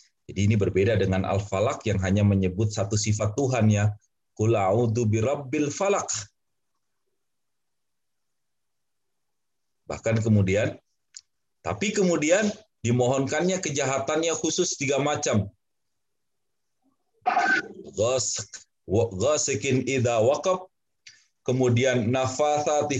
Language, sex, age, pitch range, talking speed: Indonesian, male, 30-49, 105-150 Hz, 70 wpm